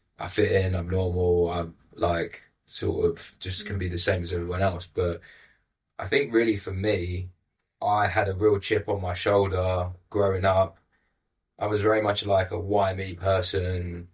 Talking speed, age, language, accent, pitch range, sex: 180 wpm, 20-39, English, British, 90-100 Hz, male